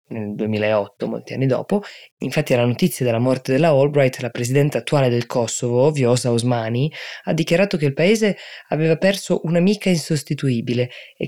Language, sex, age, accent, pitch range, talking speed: Italian, female, 20-39, native, 120-155 Hz, 155 wpm